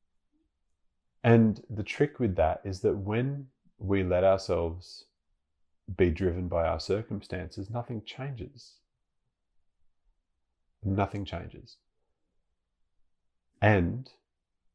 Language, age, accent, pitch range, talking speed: English, 30-49, Australian, 80-100 Hz, 85 wpm